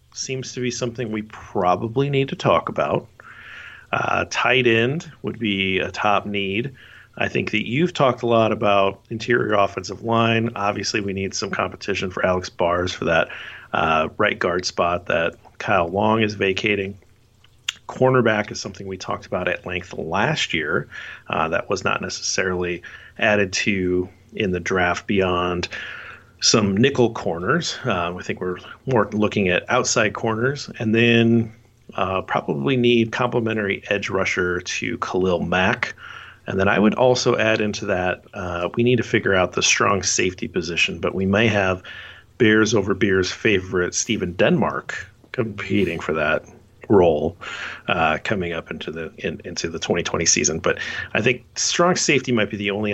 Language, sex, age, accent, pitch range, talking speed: English, male, 40-59, American, 95-120 Hz, 160 wpm